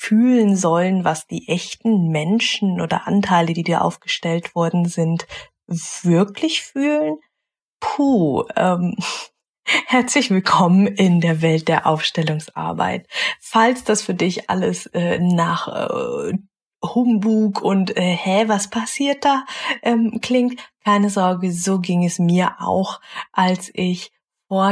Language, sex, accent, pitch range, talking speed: German, female, German, 175-210 Hz, 125 wpm